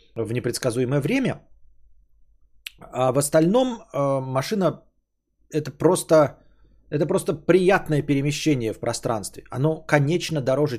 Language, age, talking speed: Bulgarian, 30-49, 100 wpm